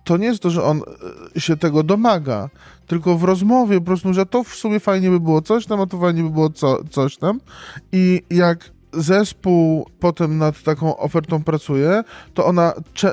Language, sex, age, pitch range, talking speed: Polish, male, 20-39, 145-180 Hz, 195 wpm